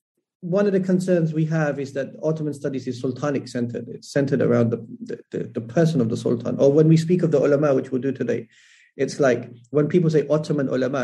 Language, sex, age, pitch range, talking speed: English, male, 30-49, 130-170 Hz, 225 wpm